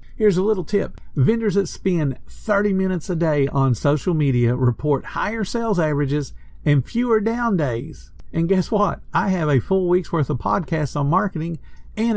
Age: 50-69